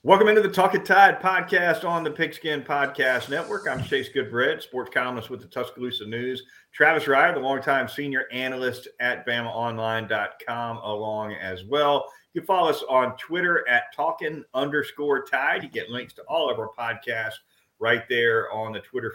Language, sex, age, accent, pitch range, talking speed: English, male, 40-59, American, 115-140 Hz, 170 wpm